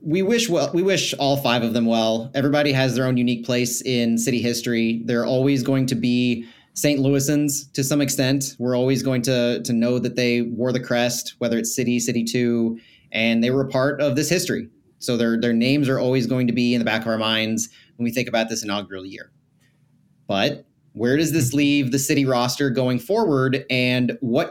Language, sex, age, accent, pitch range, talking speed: English, male, 30-49, American, 120-145 Hz, 215 wpm